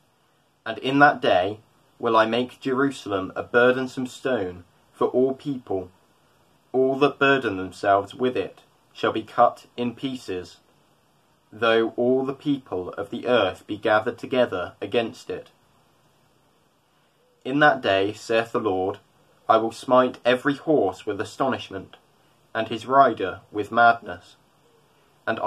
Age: 20-39